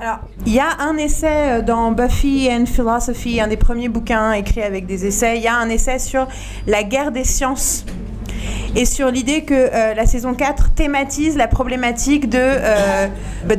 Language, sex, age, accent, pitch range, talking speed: French, female, 30-49, French, 215-255 Hz, 185 wpm